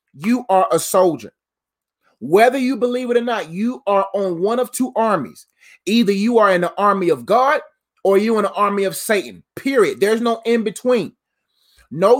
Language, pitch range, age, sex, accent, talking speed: English, 185-240 Hz, 30-49, male, American, 185 wpm